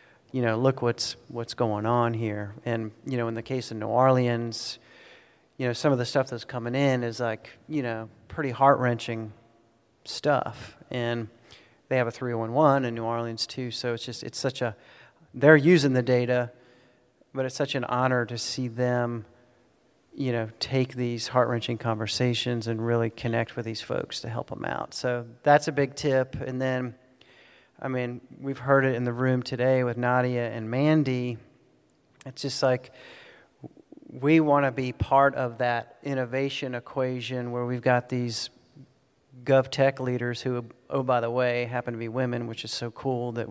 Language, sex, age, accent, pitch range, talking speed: English, male, 40-59, American, 120-130 Hz, 175 wpm